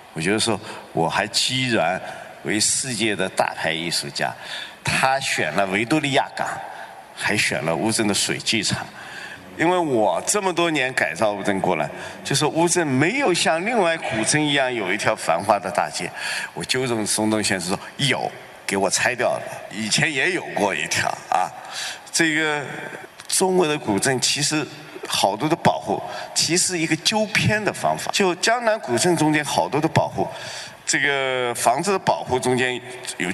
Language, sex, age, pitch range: Chinese, male, 50-69, 120-180 Hz